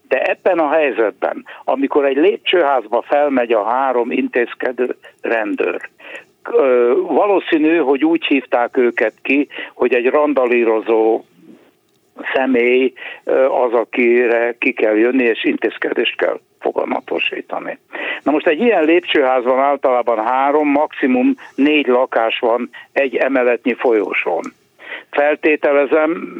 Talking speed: 105 wpm